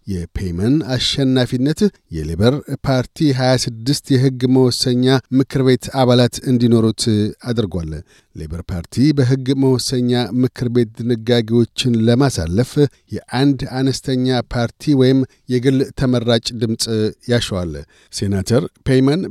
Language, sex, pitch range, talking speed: Amharic, male, 115-135 Hz, 95 wpm